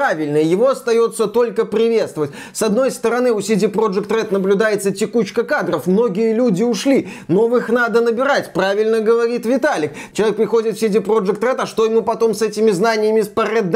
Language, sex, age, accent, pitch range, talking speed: Russian, male, 20-39, native, 205-250 Hz, 170 wpm